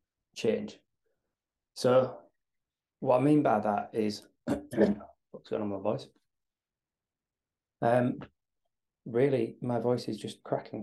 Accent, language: British, English